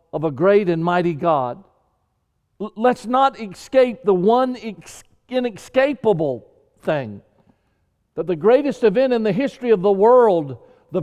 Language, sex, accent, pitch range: English, male, American, 175-245 Hz